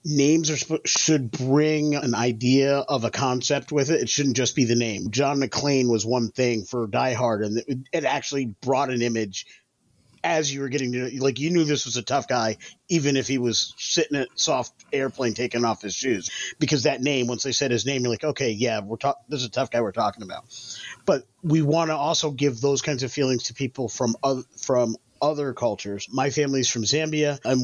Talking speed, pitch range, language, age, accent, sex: 220 wpm, 120-145 Hz, English, 30-49, American, male